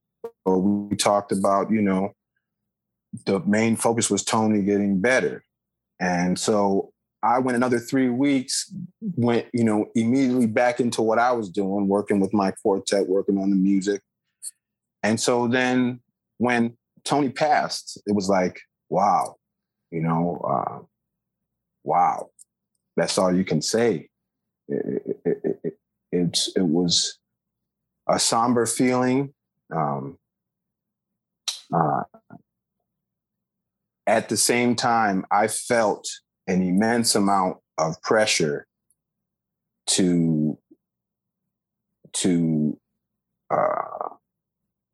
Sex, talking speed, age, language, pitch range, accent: male, 110 wpm, 30-49, English, 95-120 Hz, American